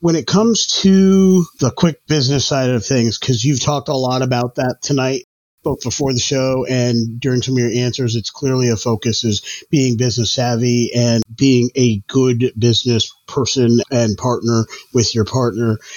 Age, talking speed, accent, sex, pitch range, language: 30-49, 175 wpm, American, male, 125-150 Hz, English